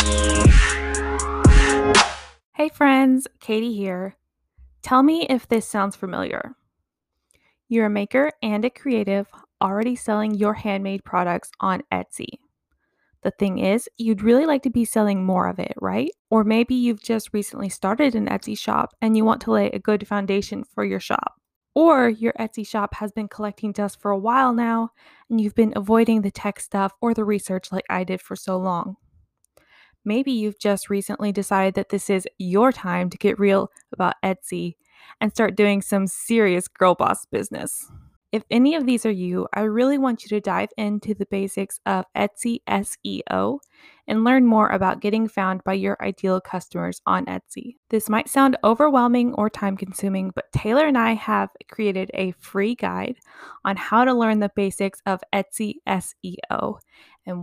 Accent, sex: American, female